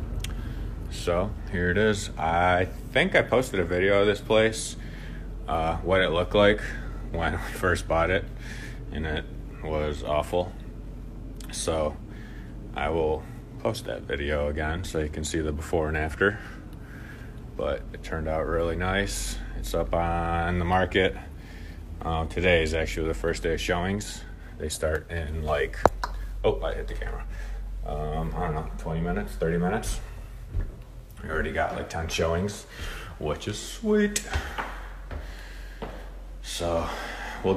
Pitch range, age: 80-105 Hz, 30-49